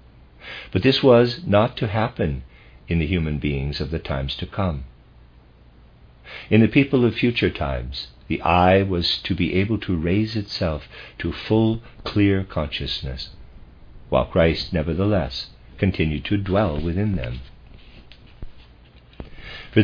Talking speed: 130 wpm